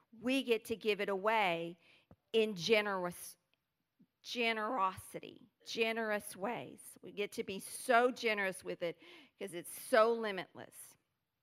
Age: 50-69